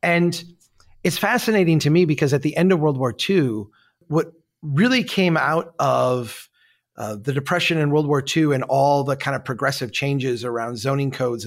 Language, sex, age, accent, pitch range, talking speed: English, male, 30-49, American, 130-160 Hz, 185 wpm